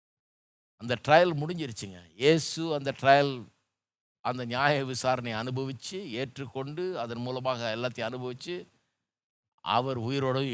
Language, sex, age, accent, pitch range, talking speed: Tamil, male, 50-69, native, 115-160 Hz, 95 wpm